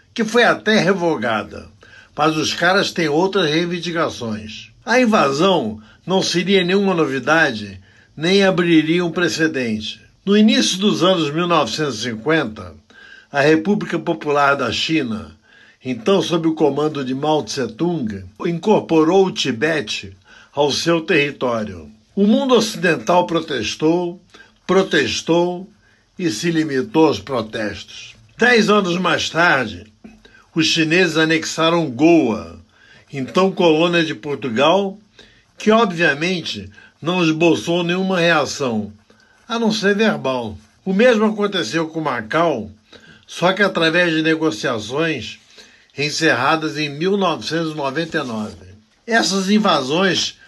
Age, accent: 60-79, Brazilian